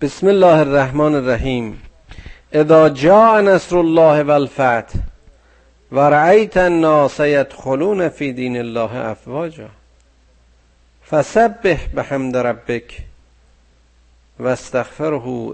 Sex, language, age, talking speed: male, Persian, 50-69, 75 wpm